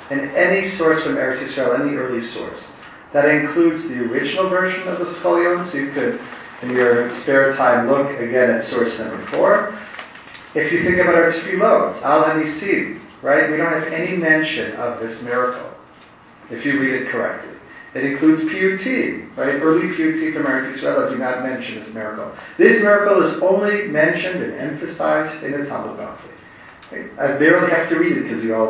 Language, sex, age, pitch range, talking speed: English, male, 40-59, 135-175 Hz, 180 wpm